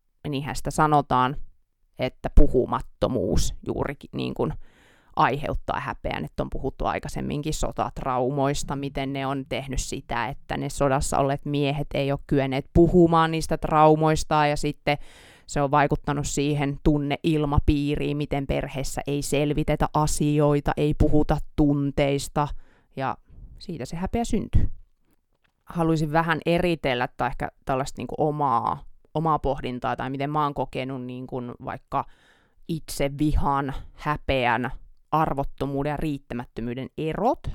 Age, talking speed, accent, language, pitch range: 20-39, 120 wpm, native, Finnish, 135-155 Hz